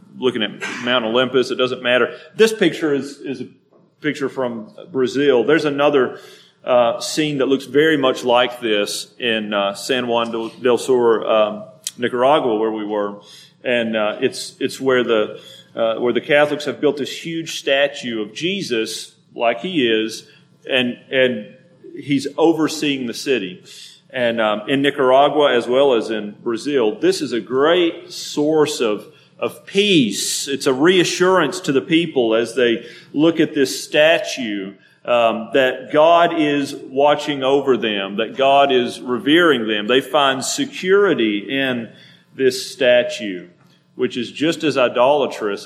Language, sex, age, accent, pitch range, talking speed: English, male, 40-59, American, 115-150 Hz, 150 wpm